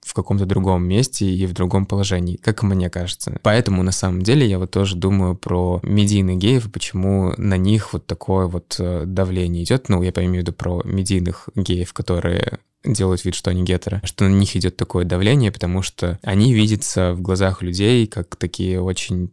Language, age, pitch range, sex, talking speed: Russian, 20-39, 90-105 Hz, male, 185 wpm